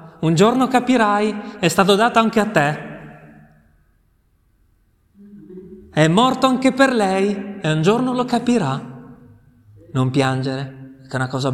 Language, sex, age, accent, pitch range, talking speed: Italian, male, 30-49, native, 130-200 Hz, 130 wpm